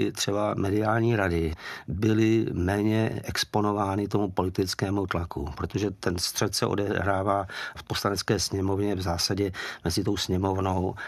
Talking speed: 120 wpm